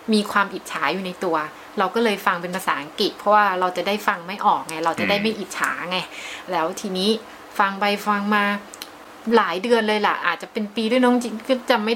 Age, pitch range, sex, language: 20-39, 190-235 Hz, female, Thai